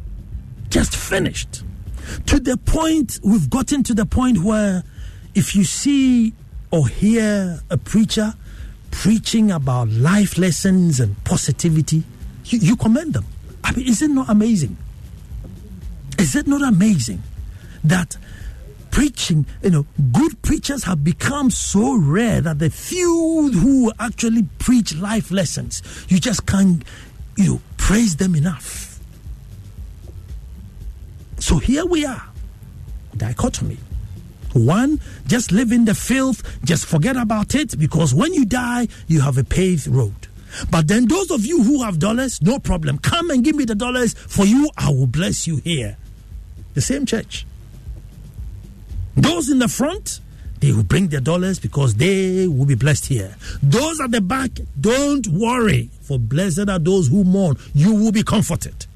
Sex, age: male, 60-79